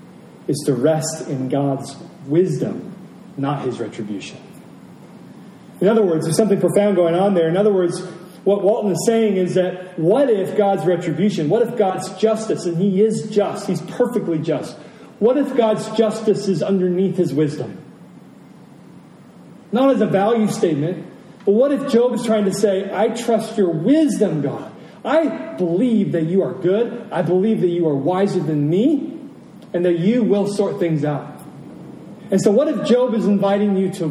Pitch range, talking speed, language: 155-210 Hz, 170 wpm, English